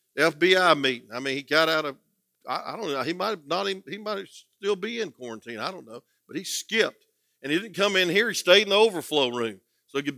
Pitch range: 125-195 Hz